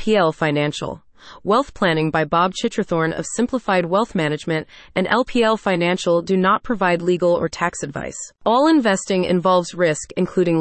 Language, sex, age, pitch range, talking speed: English, female, 30-49, 170-220 Hz, 155 wpm